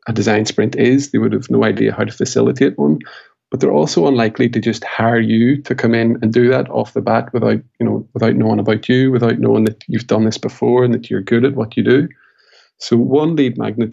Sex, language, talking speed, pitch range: male, English, 240 wpm, 110-130 Hz